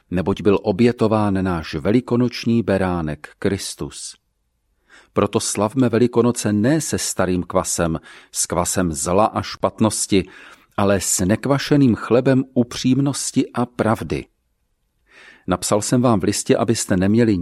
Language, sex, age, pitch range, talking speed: Czech, male, 40-59, 95-125 Hz, 115 wpm